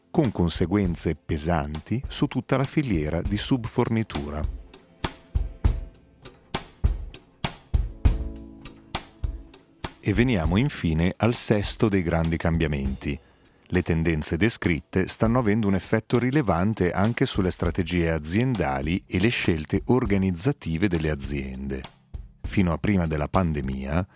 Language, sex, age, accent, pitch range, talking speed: Italian, male, 40-59, native, 75-105 Hz, 100 wpm